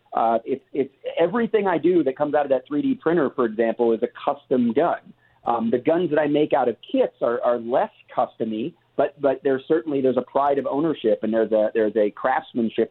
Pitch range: 120-160 Hz